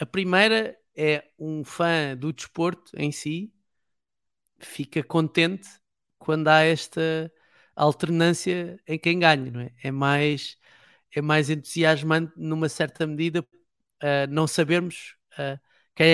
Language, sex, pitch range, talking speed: Portuguese, male, 150-180 Hz, 110 wpm